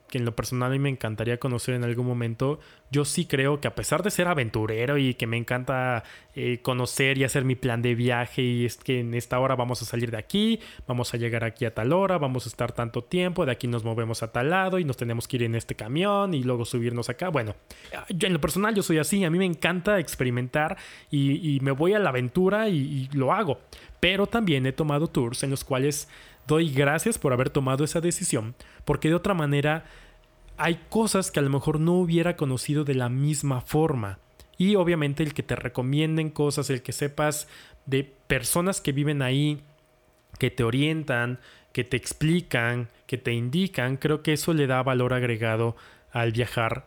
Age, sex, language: 20-39, male, Spanish